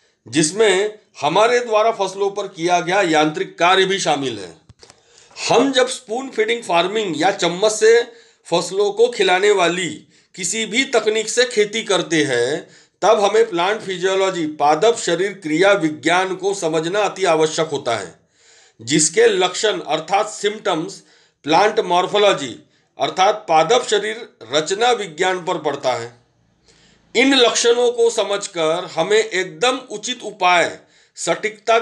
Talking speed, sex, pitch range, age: 130 wpm, male, 170-220 Hz, 40-59